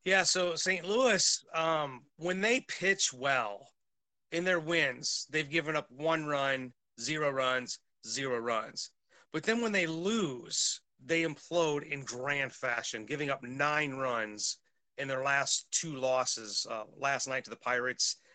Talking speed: 150 wpm